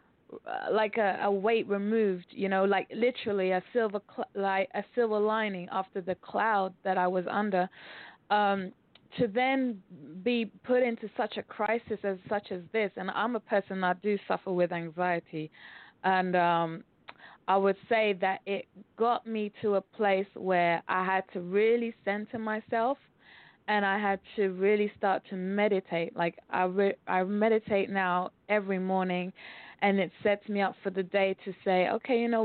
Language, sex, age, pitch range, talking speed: English, female, 20-39, 185-210 Hz, 175 wpm